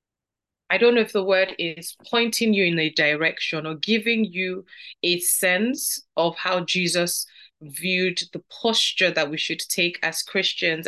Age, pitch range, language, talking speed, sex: 30-49, 170-215 Hz, English, 160 wpm, female